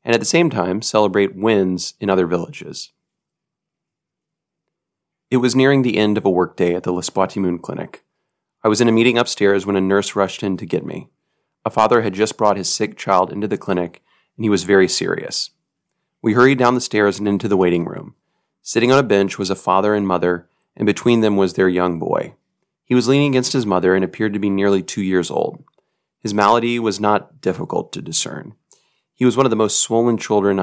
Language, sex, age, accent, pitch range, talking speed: English, male, 30-49, American, 95-115 Hz, 210 wpm